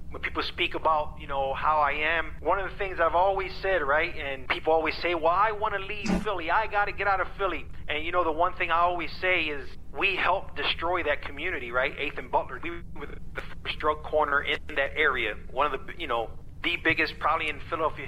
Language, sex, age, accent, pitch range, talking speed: English, male, 30-49, American, 150-195 Hz, 235 wpm